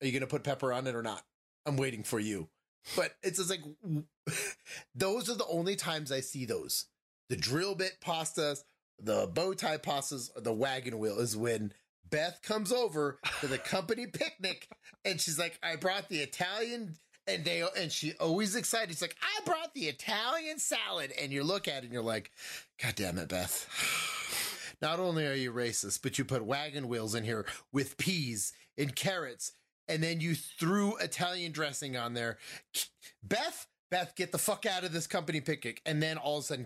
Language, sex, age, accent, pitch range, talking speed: English, male, 30-49, American, 135-185 Hz, 190 wpm